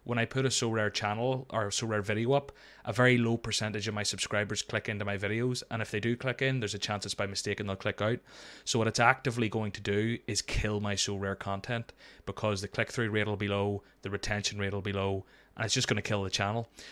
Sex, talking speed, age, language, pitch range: male, 265 wpm, 20-39, English, 100-115 Hz